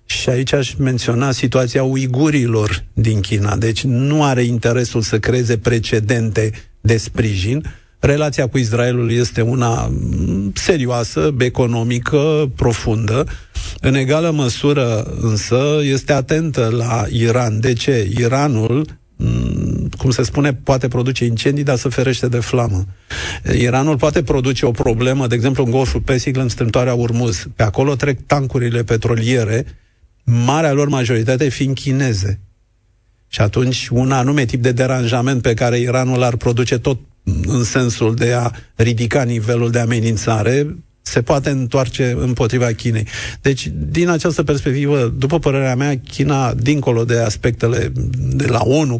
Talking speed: 135 wpm